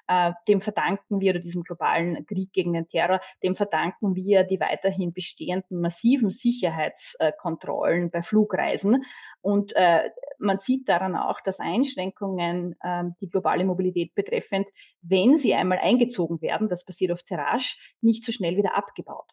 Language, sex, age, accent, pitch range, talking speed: German, female, 30-49, Austrian, 180-215 Hz, 140 wpm